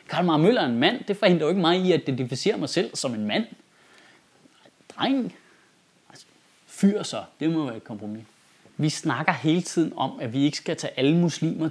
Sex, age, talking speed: male, 30-49, 190 wpm